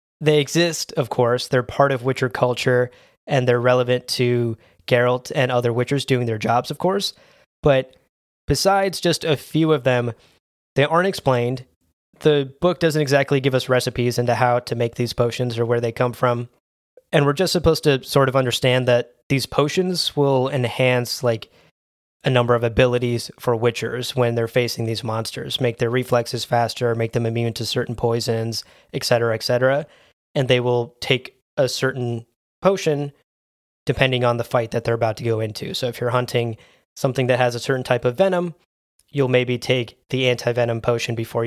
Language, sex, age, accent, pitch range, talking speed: English, male, 20-39, American, 120-140 Hz, 180 wpm